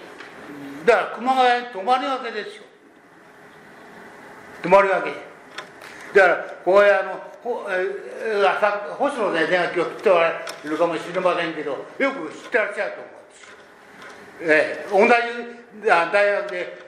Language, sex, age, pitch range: Japanese, male, 60-79, 175-255 Hz